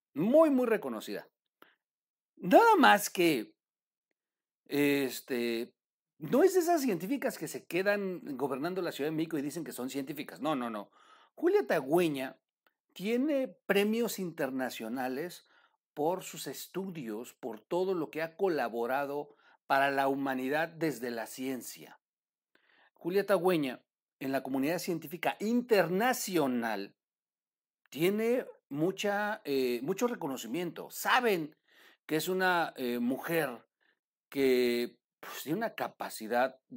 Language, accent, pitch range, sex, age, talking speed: Spanish, Mexican, 125-200 Hz, male, 50-69, 115 wpm